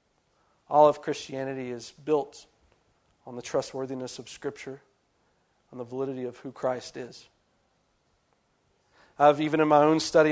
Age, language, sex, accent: 40-59, English, male, American